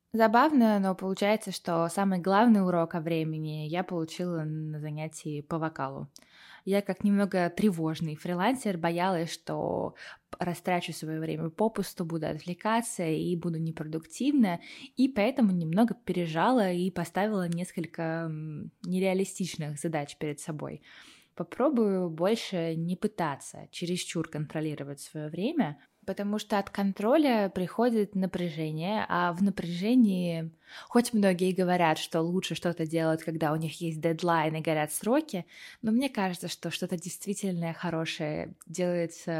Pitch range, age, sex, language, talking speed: 160-200 Hz, 20-39, female, Russian, 125 wpm